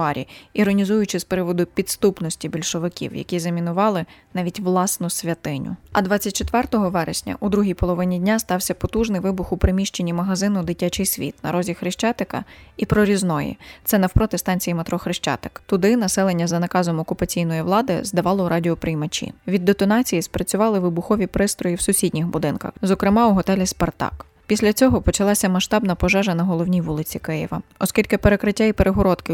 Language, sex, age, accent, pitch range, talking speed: Ukrainian, female, 20-39, native, 175-205 Hz, 140 wpm